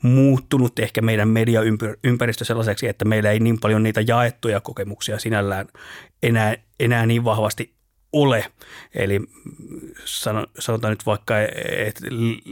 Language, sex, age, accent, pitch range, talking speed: Finnish, male, 30-49, native, 85-115 Hz, 115 wpm